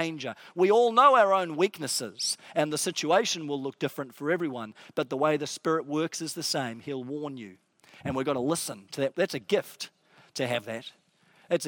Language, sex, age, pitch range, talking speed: English, male, 40-59, 145-175 Hz, 205 wpm